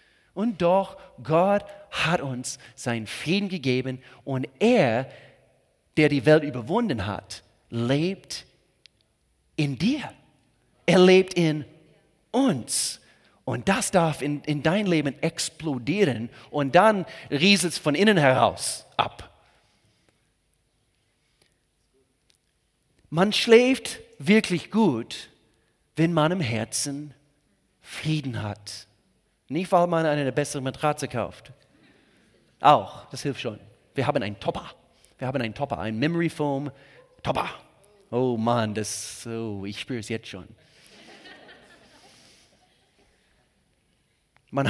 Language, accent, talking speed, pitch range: German, German, 105 wpm, 115-170 Hz